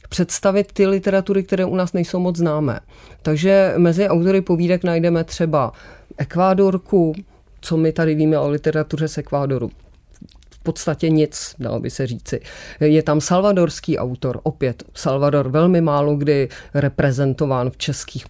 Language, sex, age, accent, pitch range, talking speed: Czech, female, 40-59, native, 145-175 Hz, 140 wpm